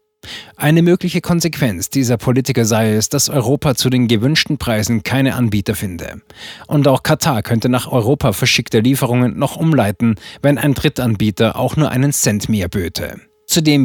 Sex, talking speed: male, 155 wpm